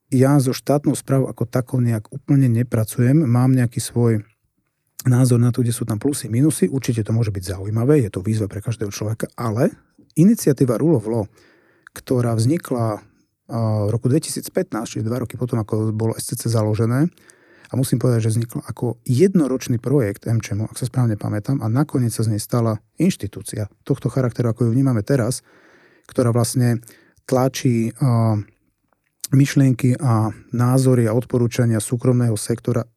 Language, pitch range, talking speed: Slovak, 110-130 Hz, 155 wpm